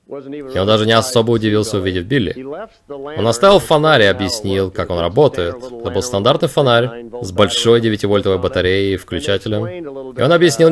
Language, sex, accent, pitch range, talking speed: Russian, male, native, 95-140 Hz, 170 wpm